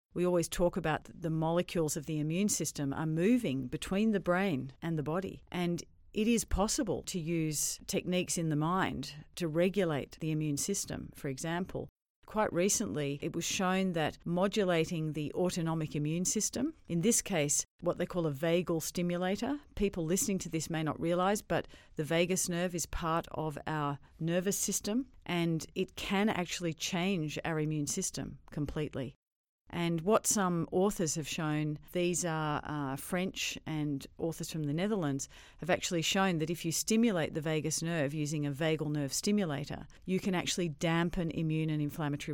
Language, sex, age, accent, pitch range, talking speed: English, female, 40-59, Australian, 150-185 Hz, 165 wpm